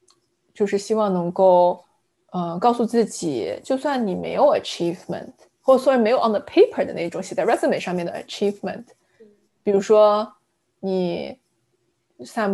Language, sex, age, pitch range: Chinese, female, 20-39, 185-235 Hz